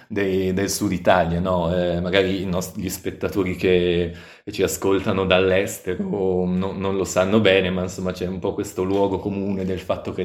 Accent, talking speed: native, 165 wpm